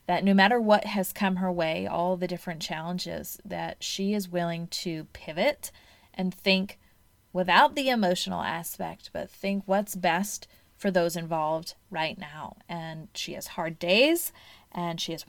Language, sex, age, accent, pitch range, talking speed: English, female, 30-49, American, 165-195 Hz, 160 wpm